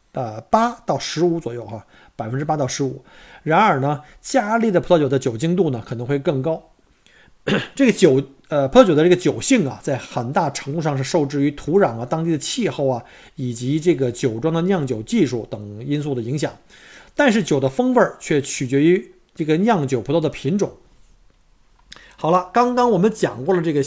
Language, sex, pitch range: Chinese, male, 135-195 Hz